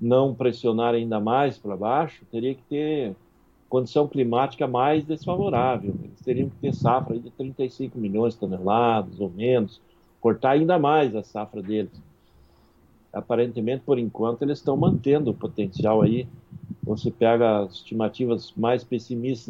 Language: Portuguese